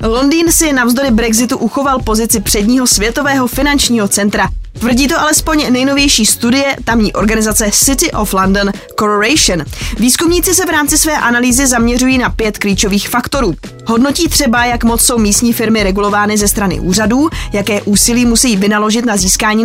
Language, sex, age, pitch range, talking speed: Czech, female, 20-39, 210-260 Hz, 150 wpm